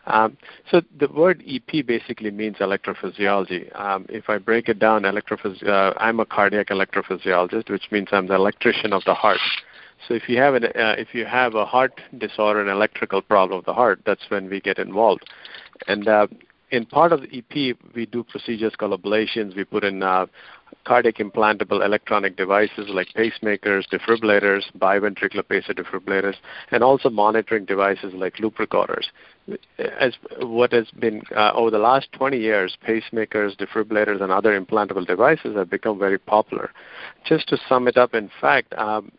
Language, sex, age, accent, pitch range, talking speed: English, male, 50-69, Indian, 100-115 Hz, 170 wpm